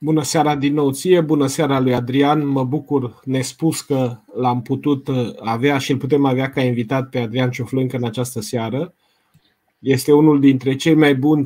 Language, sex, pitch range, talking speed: Romanian, male, 125-150 Hz, 180 wpm